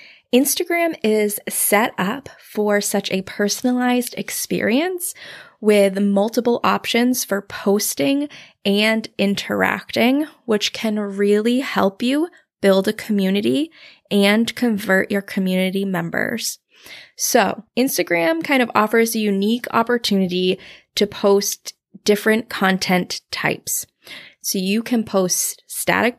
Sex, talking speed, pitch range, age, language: female, 110 wpm, 195-240 Hz, 20-39, English